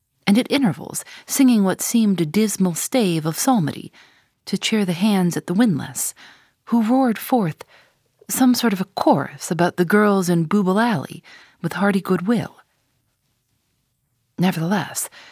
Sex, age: female, 40-59